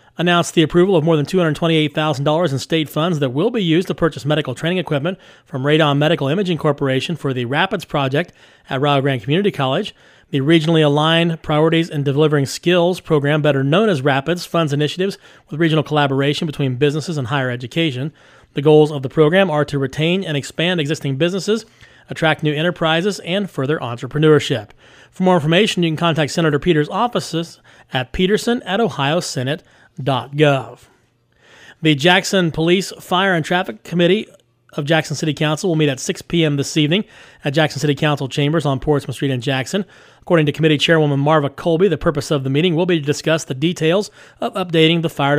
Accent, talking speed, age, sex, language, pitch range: American, 180 wpm, 30-49, male, English, 140-170 Hz